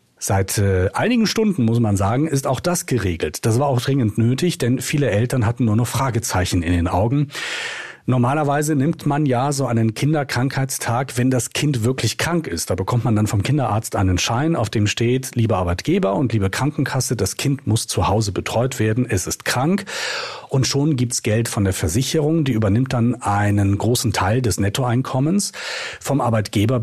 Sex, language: male, German